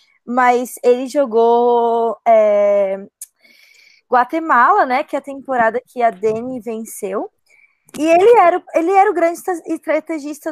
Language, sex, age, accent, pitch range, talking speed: Portuguese, female, 20-39, Brazilian, 225-295 Hz, 130 wpm